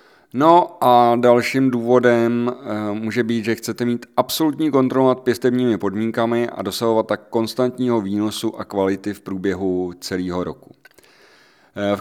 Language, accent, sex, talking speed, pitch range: Czech, native, male, 125 wpm, 100-130 Hz